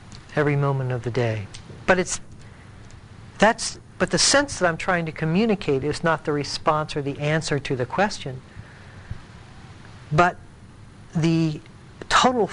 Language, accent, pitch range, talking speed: English, American, 110-165 Hz, 140 wpm